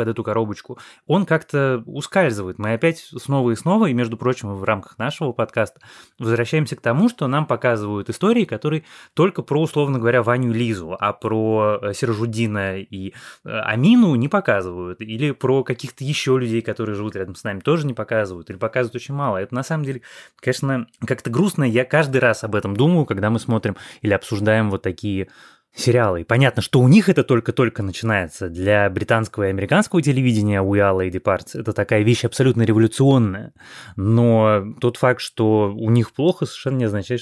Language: Russian